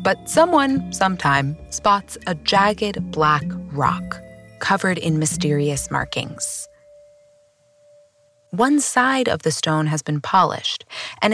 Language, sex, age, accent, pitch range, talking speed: English, female, 20-39, American, 155-245 Hz, 110 wpm